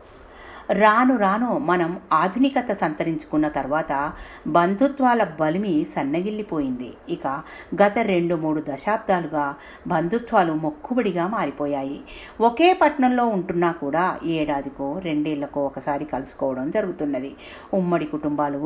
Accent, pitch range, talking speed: native, 150-235 Hz, 90 wpm